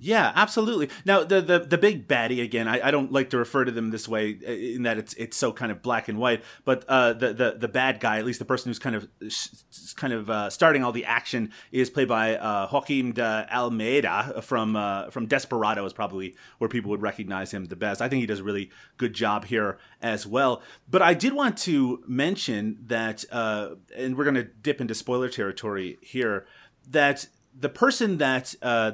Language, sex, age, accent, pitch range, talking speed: English, male, 30-49, American, 110-135 Hz, 215 wpm